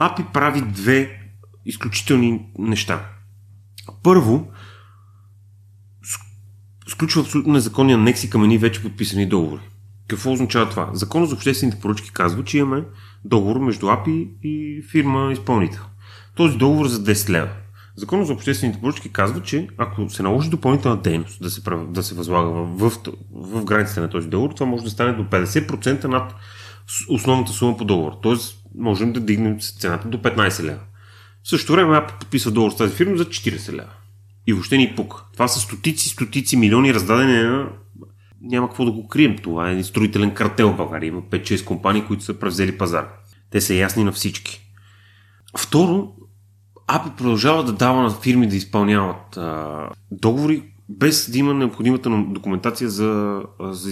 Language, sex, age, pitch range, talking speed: Bulgarian, male, 30-49, 100-125 Hz, 155 wpm